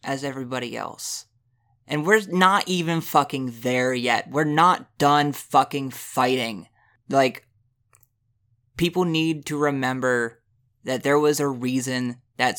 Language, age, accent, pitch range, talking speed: English, 20-39, American, 120-135 Hz, 125 wpm